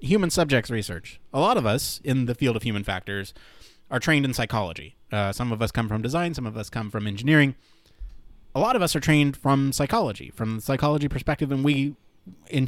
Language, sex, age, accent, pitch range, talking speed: English, male, 30-49, American, 110-145 Hz, 215 wpm